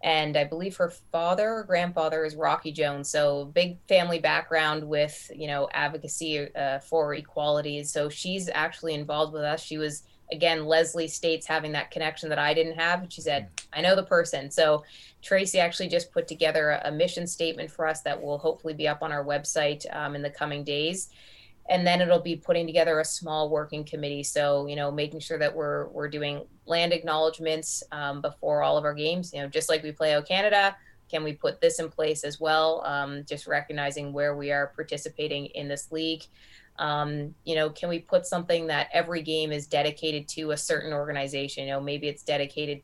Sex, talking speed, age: female, 200 wpm, 20-39